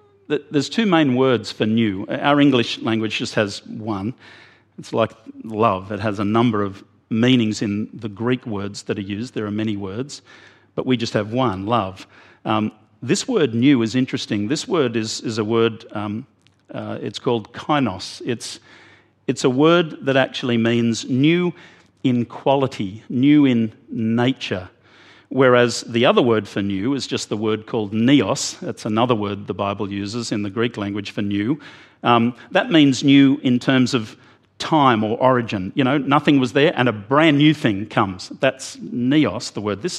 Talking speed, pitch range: 175 wpm, 110-140 Hz